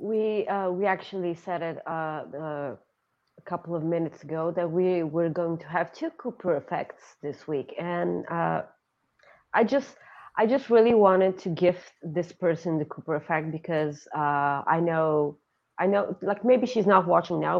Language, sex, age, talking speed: English, female, 30-49, 175 wpm